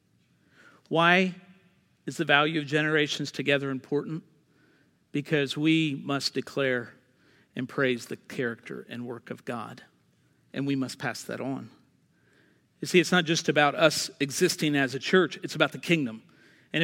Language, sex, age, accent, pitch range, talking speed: English, male, 50-69, American, 155-220 Hz, 150 wpm